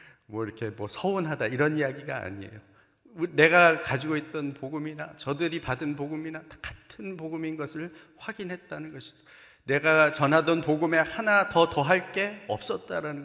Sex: male